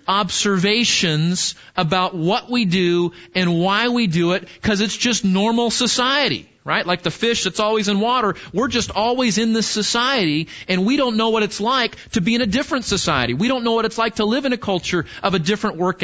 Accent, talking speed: American, 215 wpm